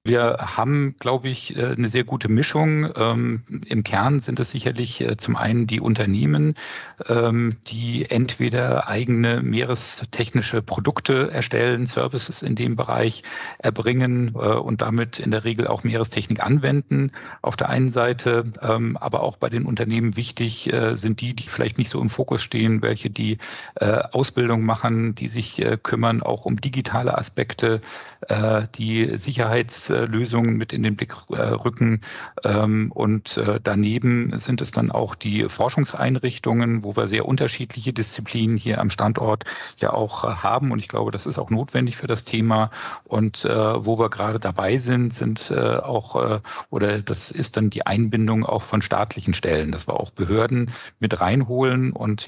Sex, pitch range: male, 110-120 Hz